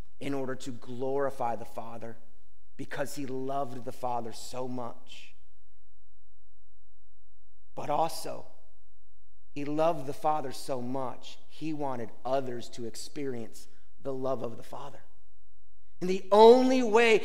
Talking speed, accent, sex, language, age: 120 wpm, American, male, English, 30-49